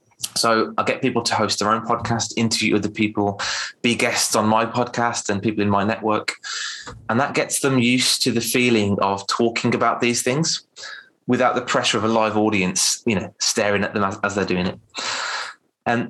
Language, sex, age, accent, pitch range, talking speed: English, male, 20-39, British, 105-120 Hz, 200 wpm